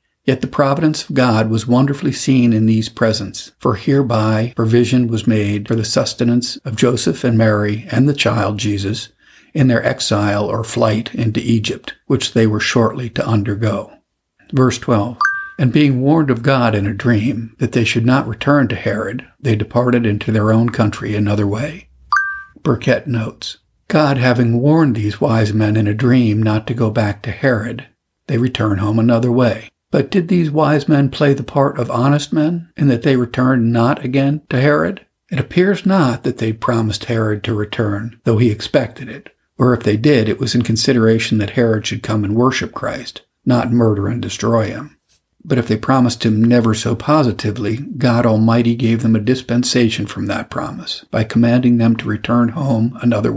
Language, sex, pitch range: English, male, 110-130 Hz